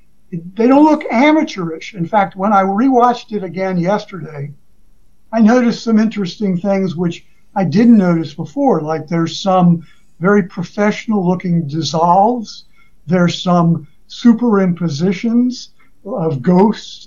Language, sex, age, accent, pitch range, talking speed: English, male, 60-79, American, 165-200 Hz, 120 wpm